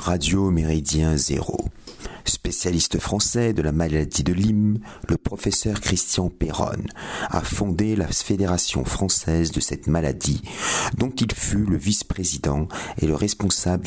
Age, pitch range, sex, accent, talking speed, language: 50-69, 80-105 Hz, male, French, 130 wpm, French